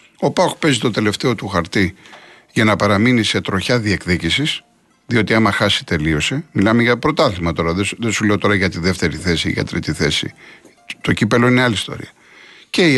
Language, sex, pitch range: Greek, male, 110-160 Hz